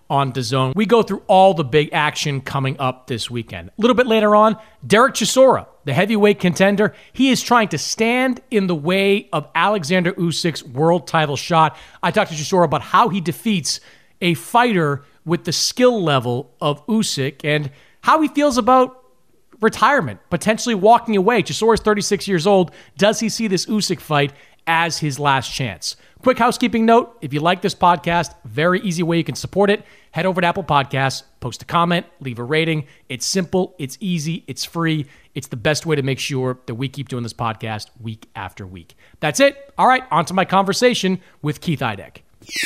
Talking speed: 190 wpm